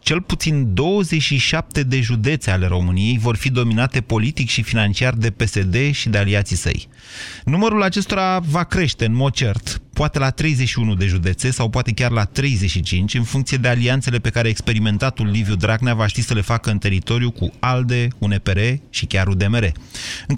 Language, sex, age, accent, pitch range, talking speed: Romanian, male, 30-49, native, 110-155 Hz, 175 wpm